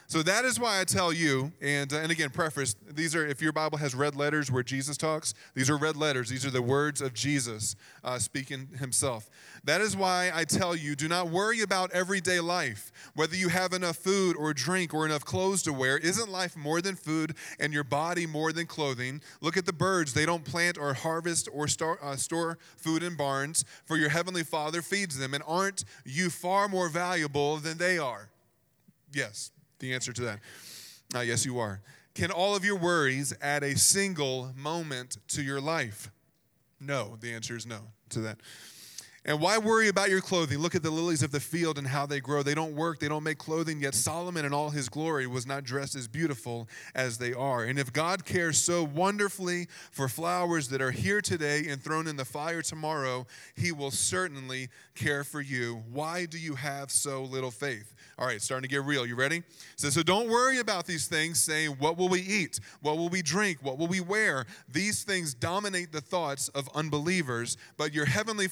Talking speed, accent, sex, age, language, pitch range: 210 wpm, American, male, 20-39, English, 135-175 Hz